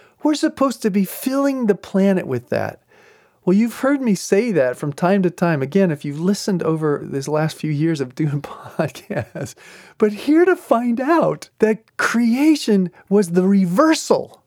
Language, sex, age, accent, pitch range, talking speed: English, male, 40-59, American, 155-250 Hz, 170 wpm